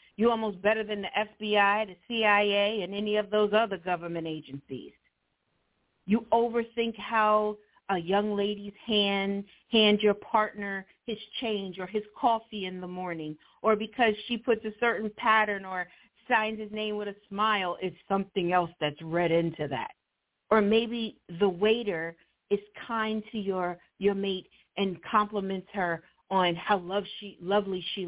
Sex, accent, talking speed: female, American, 155 wpm